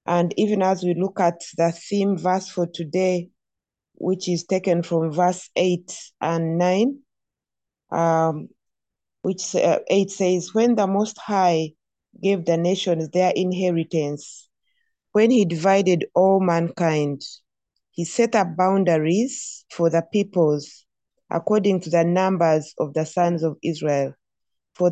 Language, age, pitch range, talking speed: English, 30-49, 165-190 Hz, 130 wpm